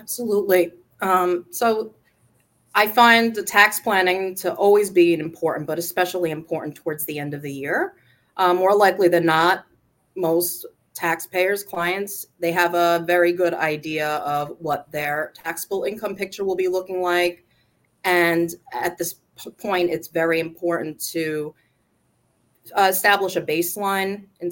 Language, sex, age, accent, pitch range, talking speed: English, female, 30-49, American, 155-195 Hz, 140 wpm